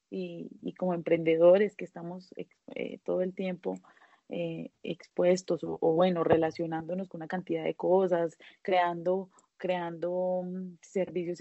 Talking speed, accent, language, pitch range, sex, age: 130 wpm, Colombian, Spanish, 175-200 Hz, female, 30-49